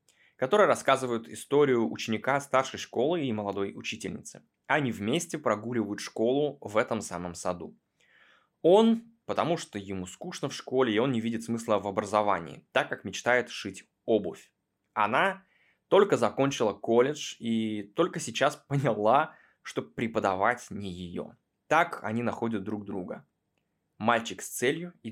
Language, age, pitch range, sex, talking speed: Russian, 20-39, 100-130 Hz, male, 135 wpm